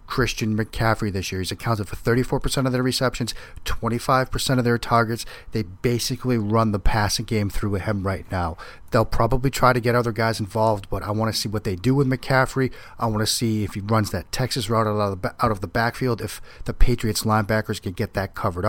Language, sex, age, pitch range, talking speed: English, male, 40-59, 105-125 Hz, 210 wpm